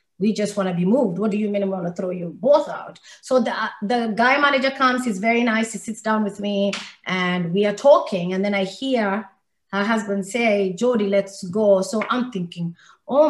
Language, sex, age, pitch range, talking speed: English, female, 30-49, 180-215 Hz, 220 wpm